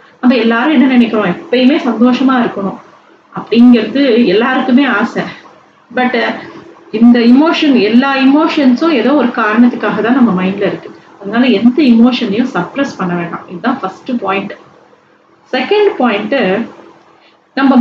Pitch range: 220-270 Hz